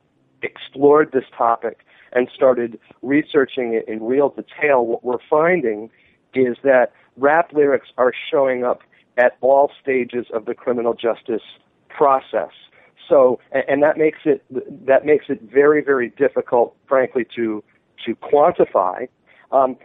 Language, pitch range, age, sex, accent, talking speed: English, 115-140 Hz, 50-69, male, American, 135 wpm